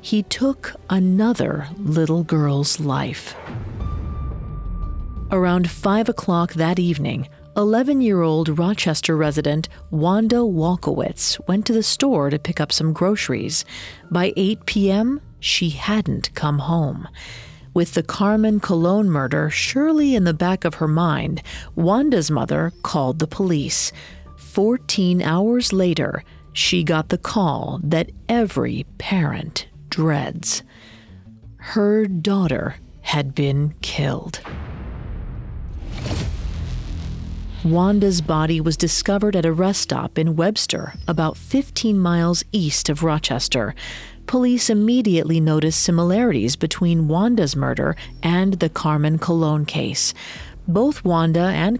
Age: 40-59